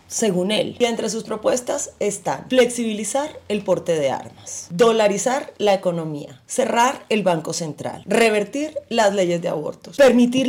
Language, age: Spanish, 30-49